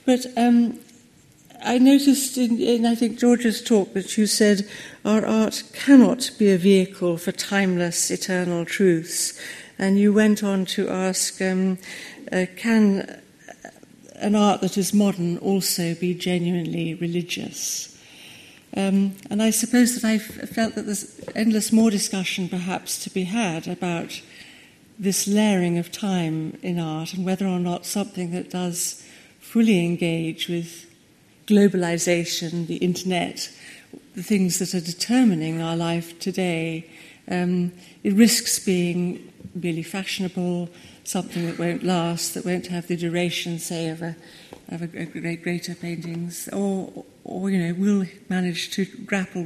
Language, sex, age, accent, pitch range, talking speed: English, female, 60-79, British, 175-215 Hz, 140 wpm